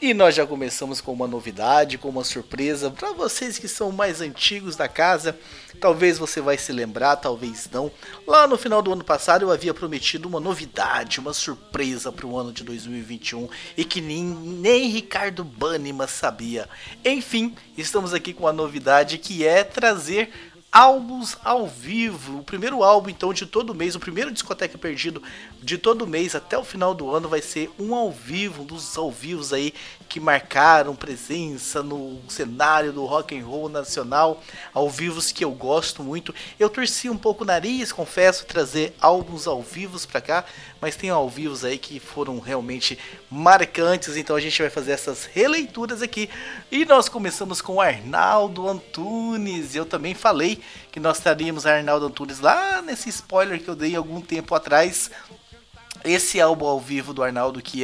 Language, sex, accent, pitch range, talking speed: Portuguese, male, Brazilian, 145-200 Hz, 170 wpm